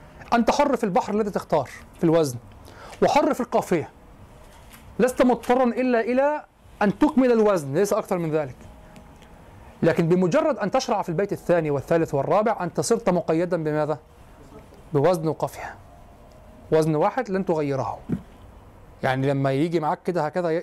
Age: 30-49